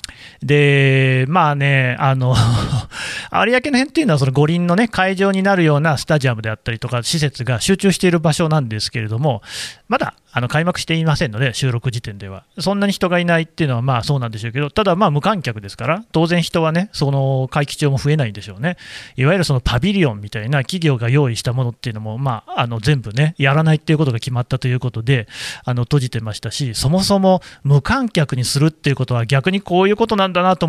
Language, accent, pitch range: Japanese, native, 125-175 Hz